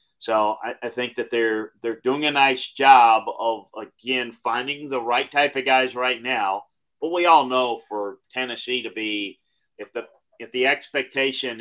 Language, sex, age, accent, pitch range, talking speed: English, male, 40-59, American, 110-135 Hz, 180 wpm